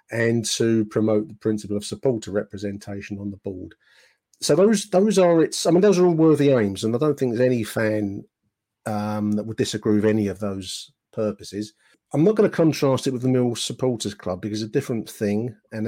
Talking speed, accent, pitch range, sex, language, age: 210 wpm, British, 105-130 Hz, male, English, 40-59